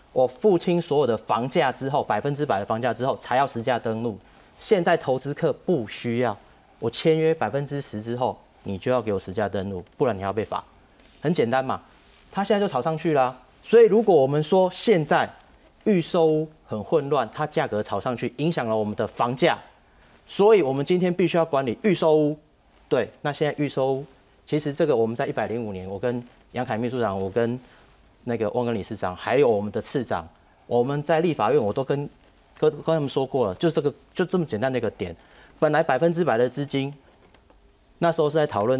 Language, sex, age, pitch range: Chinese, male, 30-49, 110-155 Hz